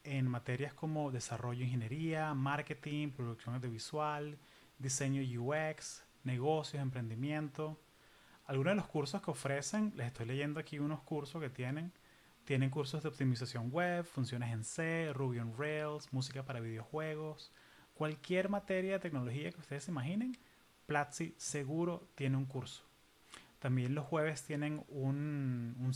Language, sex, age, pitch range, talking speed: Spanish, male, 30-49, 130-160 Hz, 140 wpm